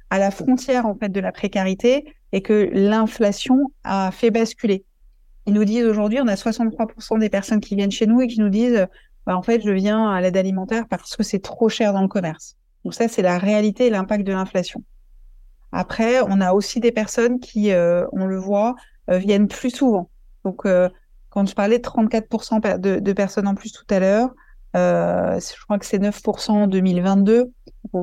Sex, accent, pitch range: female, French, 185-225 Hz